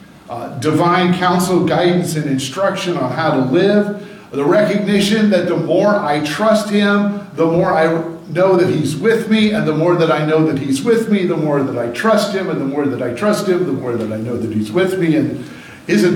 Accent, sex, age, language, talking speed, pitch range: American, male, 50-69, English, 225 wpm, 125-175 Hz